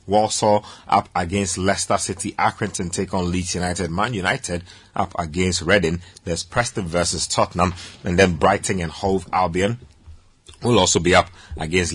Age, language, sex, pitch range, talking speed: 30-49, English, male, 85-100 Hz, 150 wpm